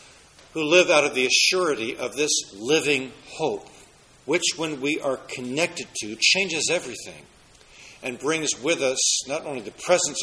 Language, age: English, 60-79